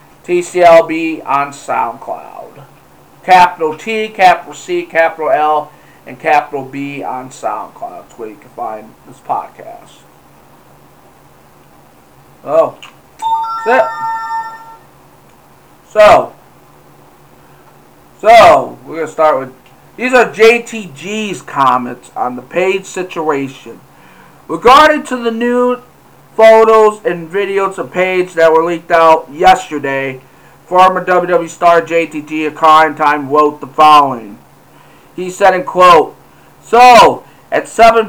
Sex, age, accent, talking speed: male, 50-69, American, 110 wpm